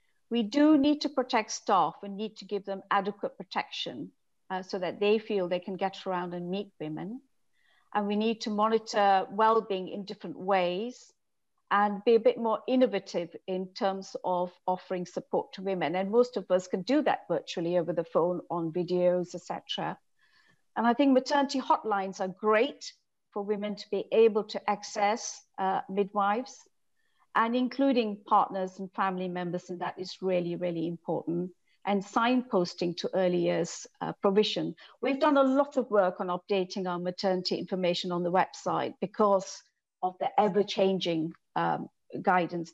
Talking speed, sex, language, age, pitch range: 165 wpm, female, English, 50-69, 185-225 Hz